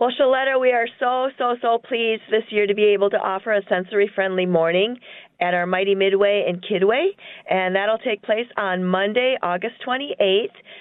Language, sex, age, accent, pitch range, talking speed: English, female, 40-59, American, 190-225 Hz, 180 wpm